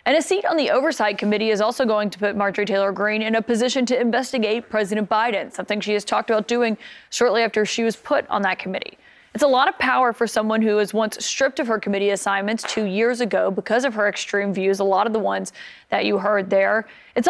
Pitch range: 205-240 Hz